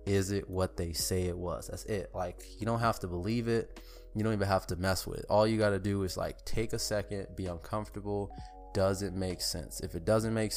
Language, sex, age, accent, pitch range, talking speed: English, male, 20-39, American, 95-110 Hz, 250 wpm